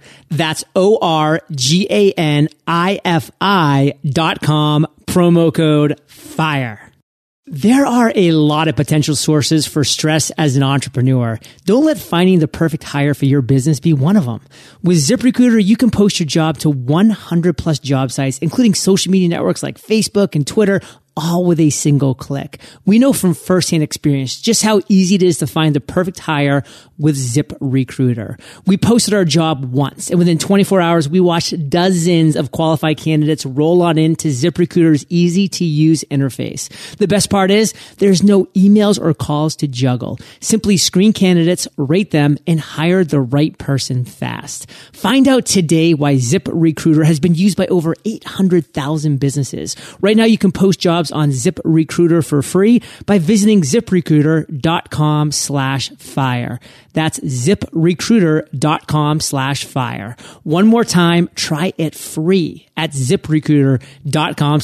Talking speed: 145 wpm